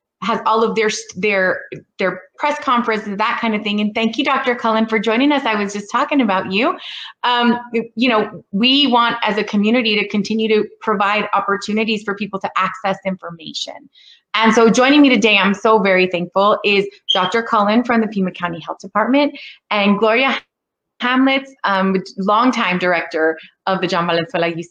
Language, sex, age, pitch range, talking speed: English, female, 30-49, 180-225 Hz, 175 wpm